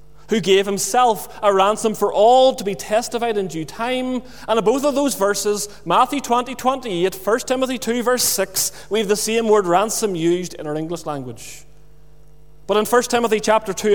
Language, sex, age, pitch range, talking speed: English, male, 30-49, 150-210 Hz, 195 wpm